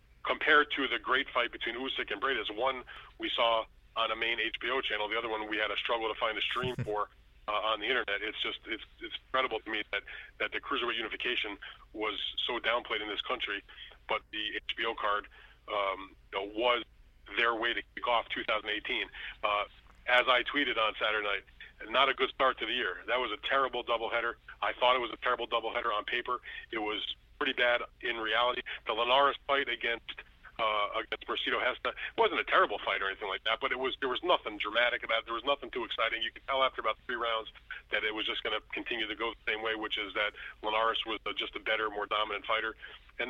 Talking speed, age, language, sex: 220 wpm, 30-49, English, male